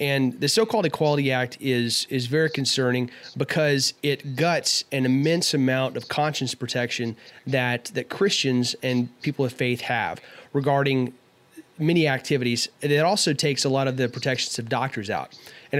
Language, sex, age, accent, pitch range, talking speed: English, male, 30-49, American, 125-145 Hz, 165 wpm